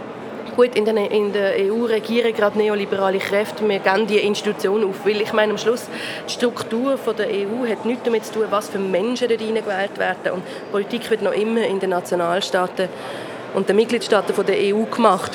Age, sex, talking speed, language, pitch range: 20-39, female, 200 wpm, German, 205-230 Hz